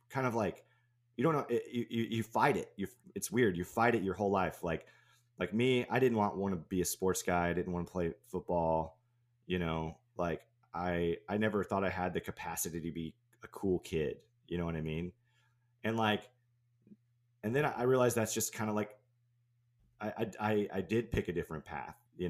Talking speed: 215 wpm